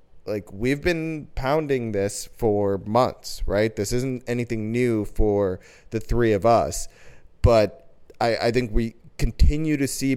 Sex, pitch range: male, 100-130 Hz